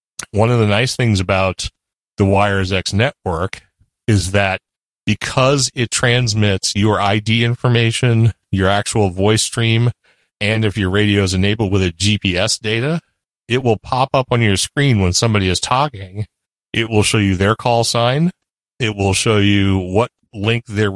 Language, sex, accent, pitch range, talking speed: English, male, American, 100-120 Hz, 165 wpm